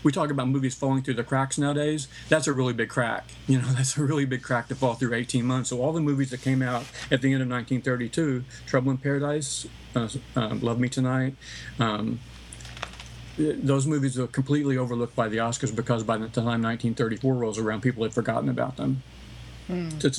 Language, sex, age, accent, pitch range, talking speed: English, male, 50-69, American, 120-135 Hz, 200 wpm